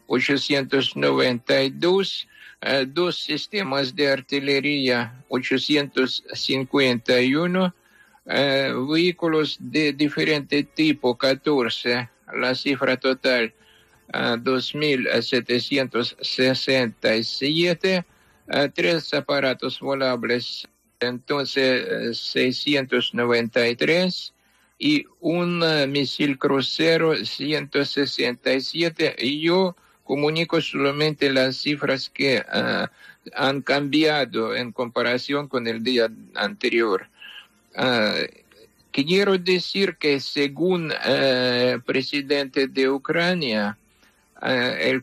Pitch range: 125-155 Hz